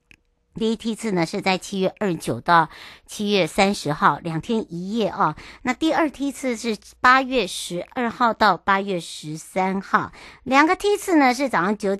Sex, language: male, Chinese